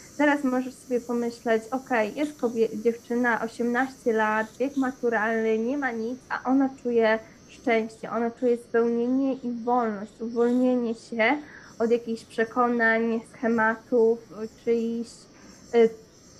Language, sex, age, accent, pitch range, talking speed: Polish, female, 20-39, native, 225-255 Hz, 120 wpm